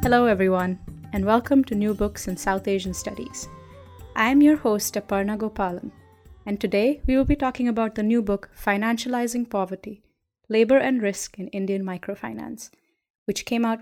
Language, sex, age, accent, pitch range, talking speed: English, female, 20-39, Indian, 195-255 Hz, 165 wpm